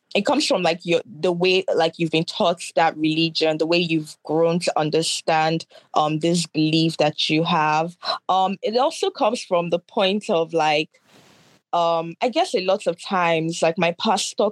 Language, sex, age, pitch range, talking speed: English, female, 20-39, 155-175 Hz, 180 wpm